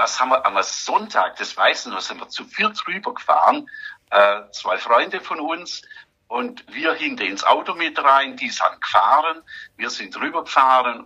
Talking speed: 180 wpm